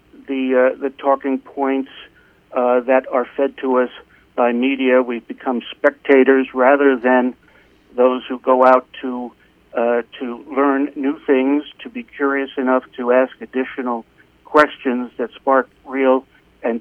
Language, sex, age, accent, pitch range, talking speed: English, male, 60-79, American, 125-145 Hz, 145 wpm